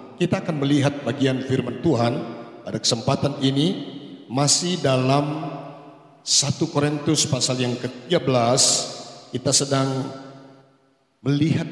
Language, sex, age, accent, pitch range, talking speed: Indonesian, male, 50-69, native, 135-160 Hz, 95 wpm